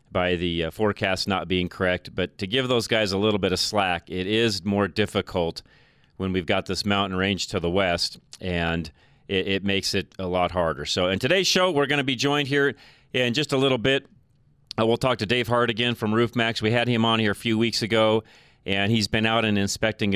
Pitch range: 95-110 Hz